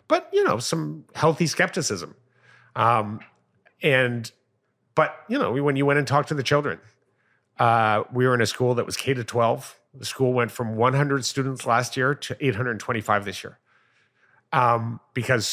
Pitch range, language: 110-135 Hz, English